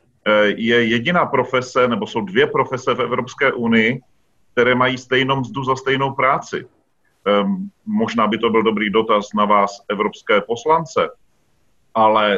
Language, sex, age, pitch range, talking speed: Slovak, male, 40-59, 110-135 Hz, 135 wpm